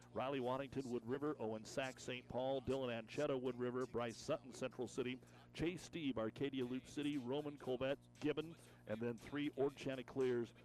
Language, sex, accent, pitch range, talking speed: English, male, American, 115-135 Hz, 165 wpm